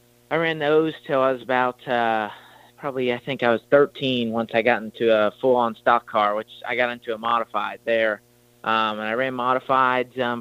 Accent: American